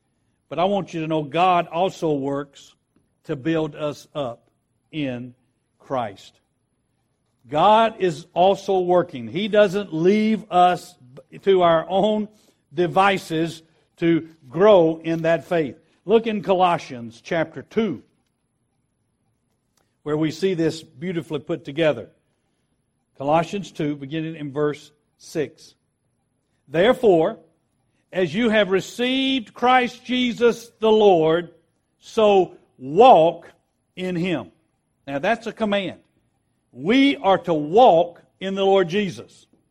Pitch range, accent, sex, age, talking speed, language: 145-210 Hz, American, male, 60-79, 115 wpm, English